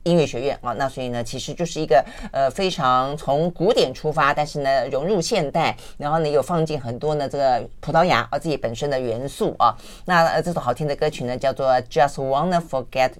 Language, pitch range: Chinese, 130-180 Hz